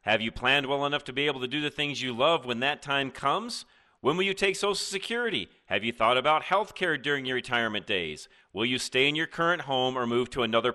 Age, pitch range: 40-59, 130-195 Hz